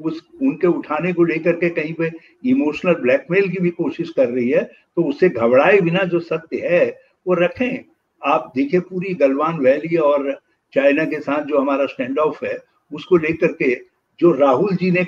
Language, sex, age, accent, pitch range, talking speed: English, male, 60-79, Indian, 160-245 Hz, 180 wpm